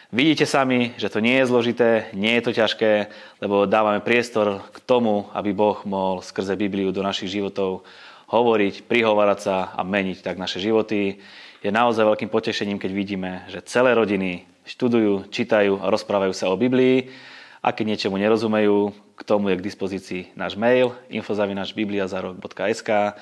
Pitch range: 100-115 Hz